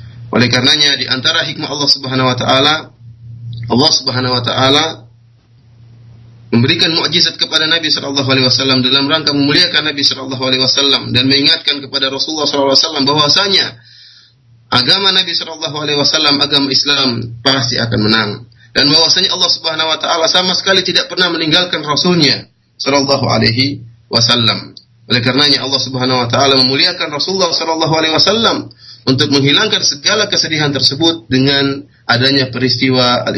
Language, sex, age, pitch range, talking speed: Malay, male, 30-49, 115-145 Hz, 130 wpm